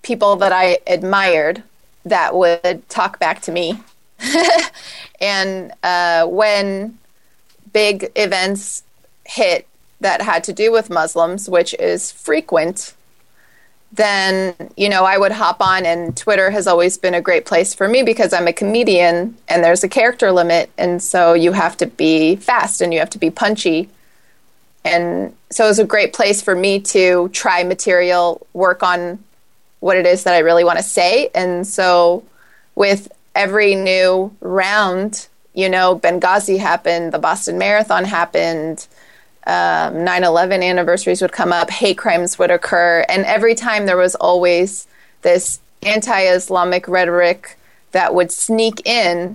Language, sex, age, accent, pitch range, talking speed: English, female, 30-49, American, 175-205 Hz, 150 wpm